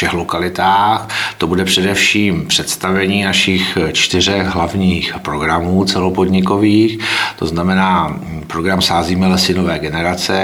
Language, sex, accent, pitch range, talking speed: Czech, male, native, 85-95 Hz, 105 wpm